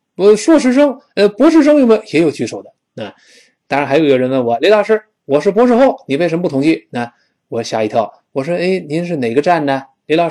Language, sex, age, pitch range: Chinese, male, 20-39, 125-200 Hz